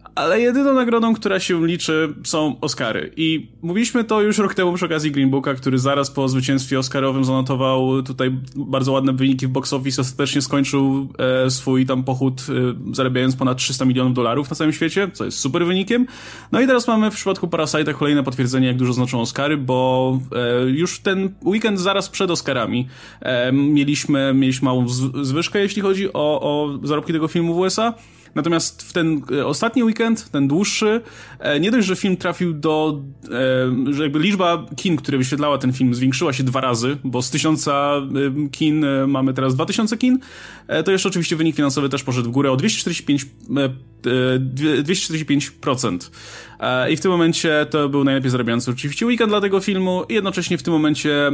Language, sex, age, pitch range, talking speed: Polish, male, 20-39, 130-170 Hz, 175 wpm